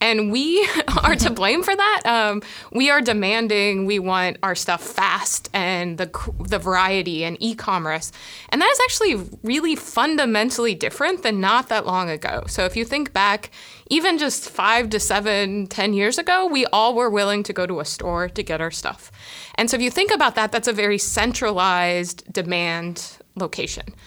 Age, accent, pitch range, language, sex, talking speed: 20-39, American, 185-245 Hz, English, female, 180 wpm